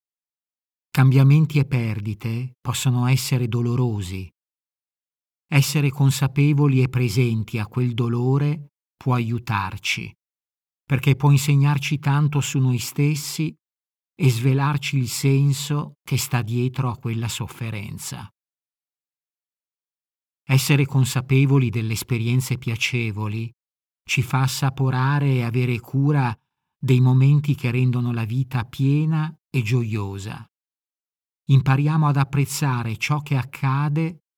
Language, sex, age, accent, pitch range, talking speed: Italian, male, 50-69, native, 120-140 Hz, 100 wpm